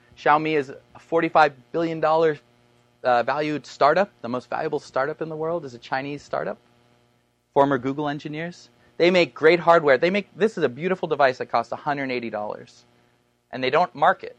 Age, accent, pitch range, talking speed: 30-49, American, 115-155 Hz, 165 wpm